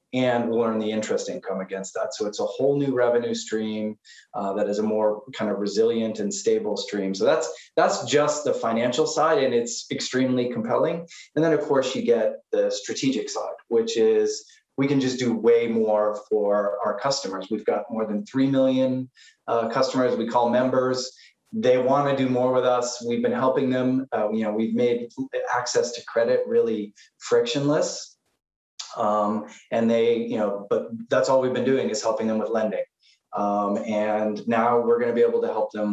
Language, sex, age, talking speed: English, male, 20-39, 190 wpm